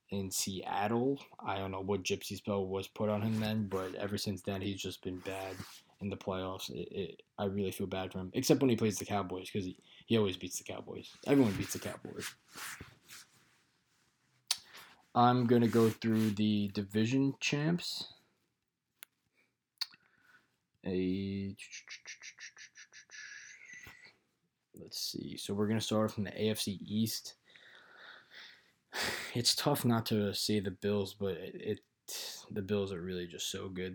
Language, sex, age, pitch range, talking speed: English, male, 20-39, 95-110 Hz, 150 wpm